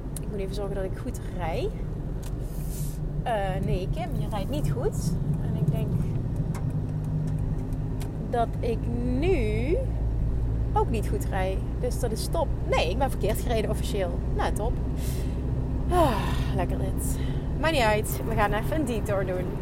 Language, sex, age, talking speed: Dutch, female, 30-49, 145 wpm